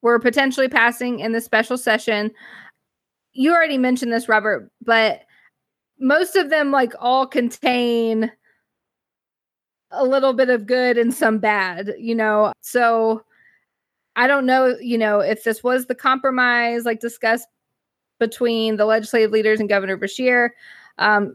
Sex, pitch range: female, 215-250 Hz